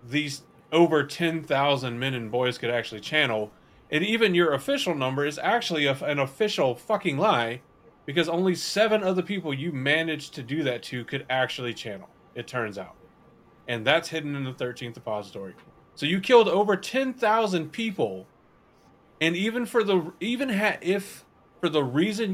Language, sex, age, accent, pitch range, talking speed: English, male, 30-49, American, 130-180 Hz, 170 wpm